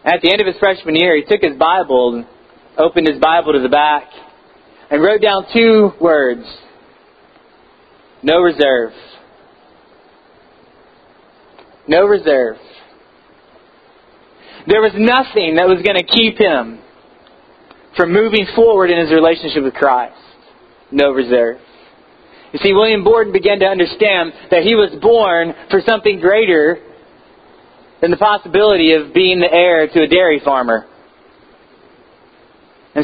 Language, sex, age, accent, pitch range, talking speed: English, male, 30-49, American, 160-210 Hz, 130 wpm